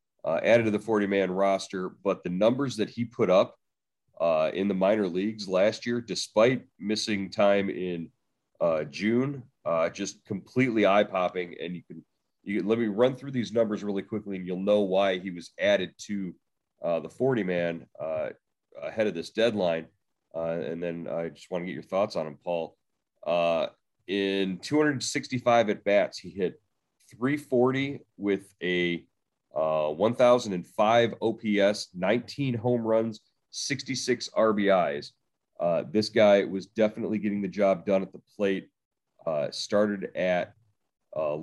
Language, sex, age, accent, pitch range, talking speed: English, male, 30-49, American, 90-115 Hz, 160 wpm